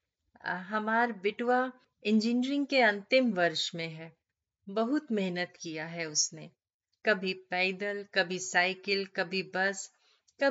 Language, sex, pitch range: Hindi, female, 175-220 Hz